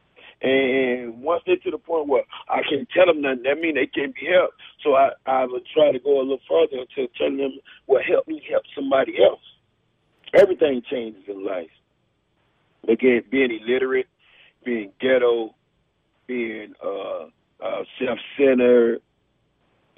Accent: American